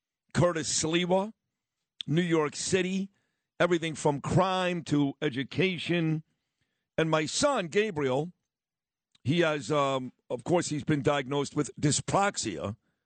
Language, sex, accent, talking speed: English, male, American, 110 wpm